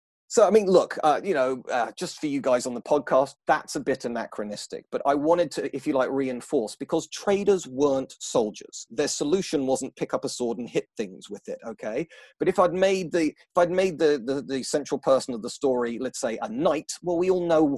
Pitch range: 130-175 Hz